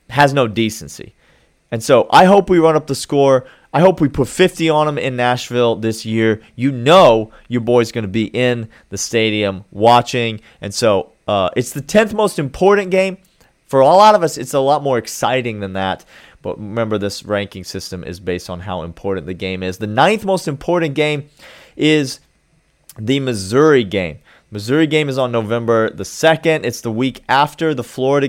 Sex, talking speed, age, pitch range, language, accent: male, 190 wpm, 30-49, 105-145 Hz, English, American